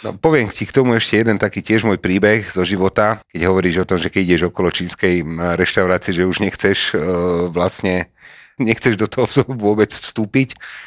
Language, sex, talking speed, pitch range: Slovak, male, 180 wpm, 80-105 Hz